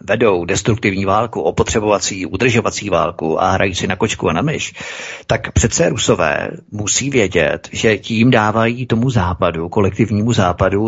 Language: Czech